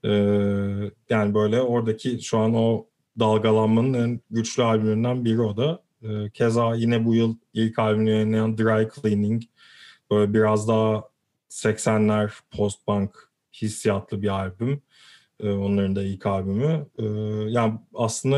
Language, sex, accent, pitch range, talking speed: Turkish, male, native, 105-120 Hz, 120 wpm